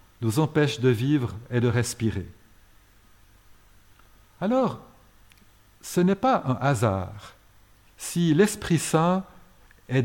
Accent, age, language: French, 60-79, French